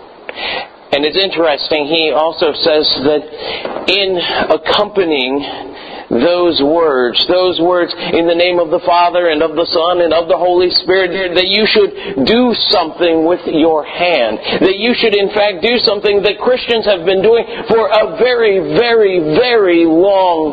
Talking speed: 160 wpm